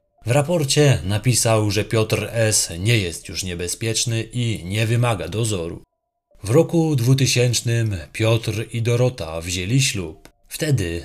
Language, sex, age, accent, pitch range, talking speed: Polish, male, 20-39, native, 95-130 Hz, 125 wpm